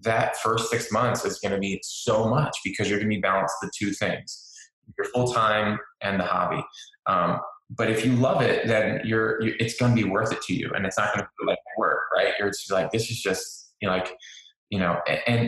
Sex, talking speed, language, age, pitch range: male, 245 wpm, English, 20-39, 95-115 Hz